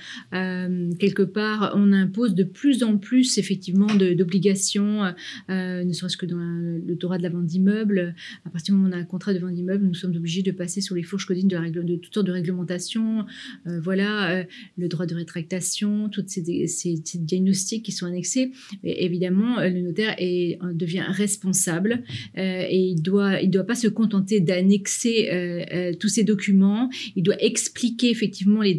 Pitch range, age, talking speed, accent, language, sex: 180-210 Hz, 30-49, 205 wpm, French, French, female